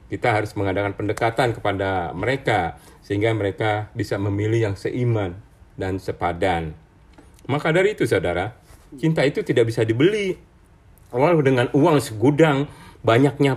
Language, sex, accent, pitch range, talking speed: Indonesian, male, native, 95-130 Hz, 125 wpm